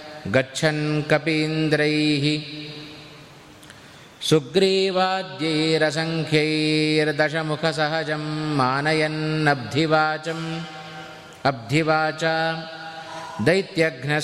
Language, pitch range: Kannada, 145-160 Hz